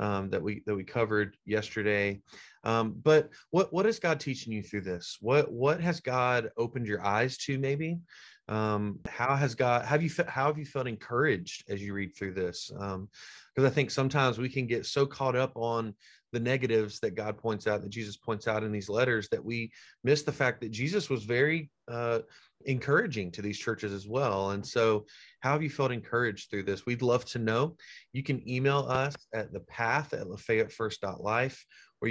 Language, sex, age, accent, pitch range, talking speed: English, male, 30-49, American, 105-135 Hz, 195 wpm